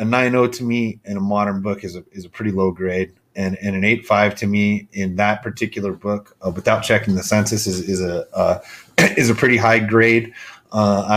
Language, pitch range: English, 95-110 Hz